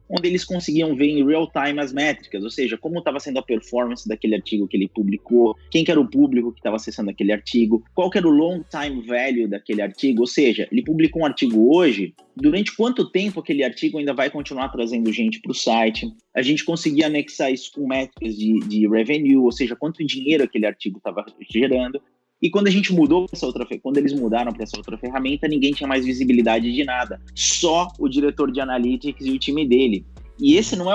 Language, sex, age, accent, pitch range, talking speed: Portuguese, male, 20-39, Brazilian, 110-155 Hz, 210 wpm